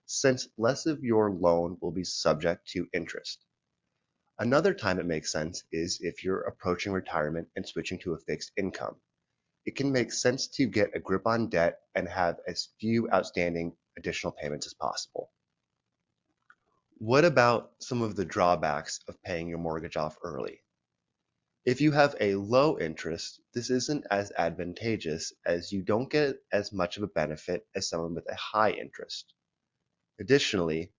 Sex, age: male, 30-49